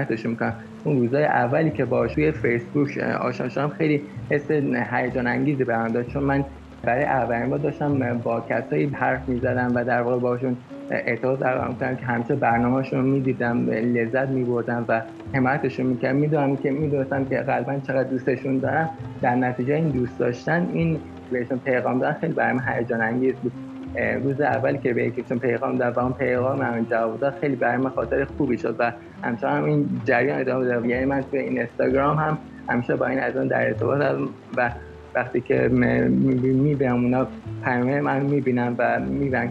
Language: English